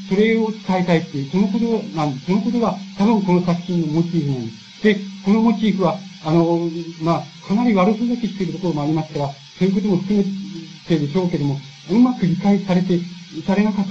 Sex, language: male, Japanese